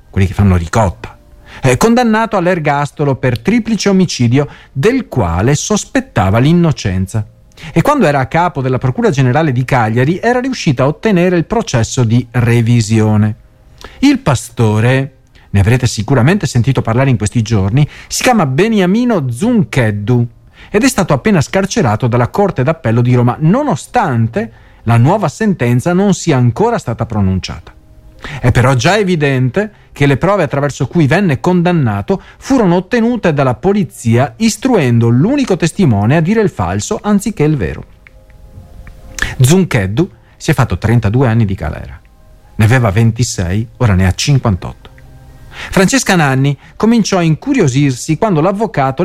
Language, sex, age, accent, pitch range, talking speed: Italian, male, 40-59, native, 115-185 Hz, 135 wpm